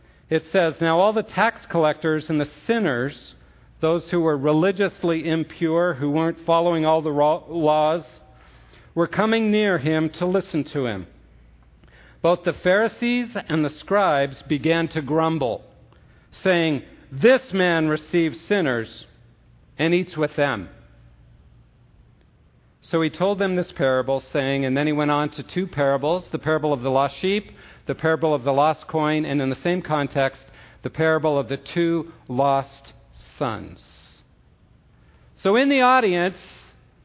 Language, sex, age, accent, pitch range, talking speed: English, male, 50-69, American, 135-170 Hz, 145 wpm